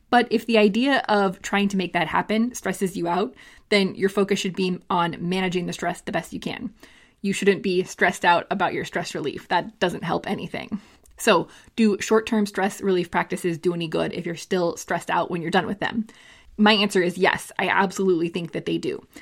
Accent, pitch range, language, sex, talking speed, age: American, 180-215 Hz, English, female, 210 wpm, 20-39